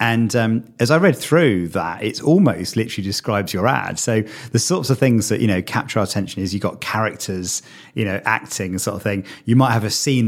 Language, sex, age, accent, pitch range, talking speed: English, male, 40-59, British, 105-125 Hz, 230 wpm